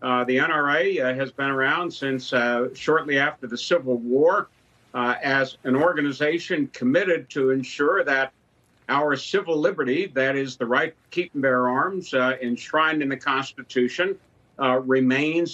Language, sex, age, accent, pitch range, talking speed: English, male, 60-79, American, 125-160 Hz, 145 wpm